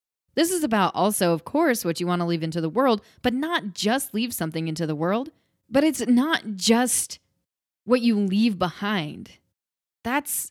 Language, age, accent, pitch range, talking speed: English, 20-39, American, 170-235 Hz, 175 wpm